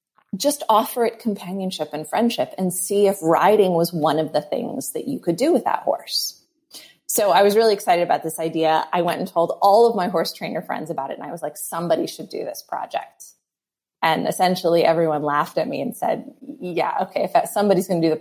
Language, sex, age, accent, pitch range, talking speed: English, female, 20-39, American, 165-220 Hz, 220 wpm